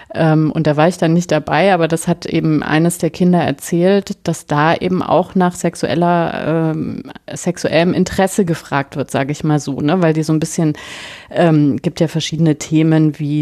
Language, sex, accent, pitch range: German, female, German, 155-180 Hz